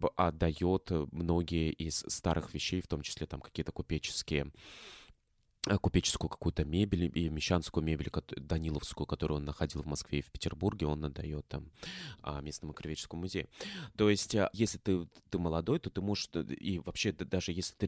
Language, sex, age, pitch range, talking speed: Russian, male, 20-39, 80-95 Hz, 155 wpm